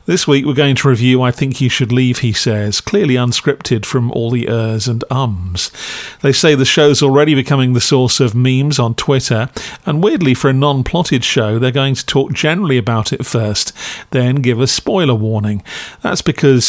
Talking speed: 195 wpm